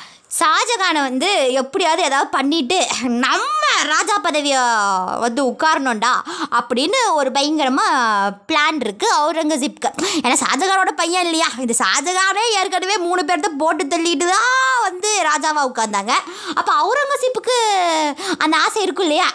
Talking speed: 85 wpm